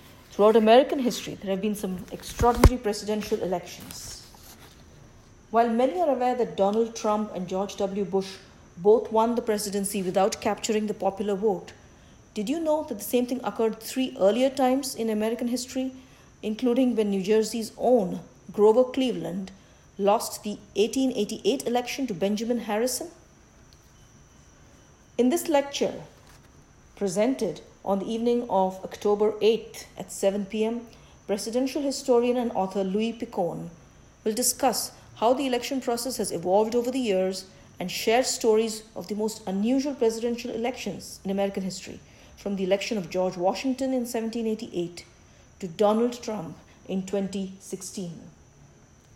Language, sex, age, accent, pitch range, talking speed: English, female, 50-69, Indian, 195-245 Hz, 140 wpm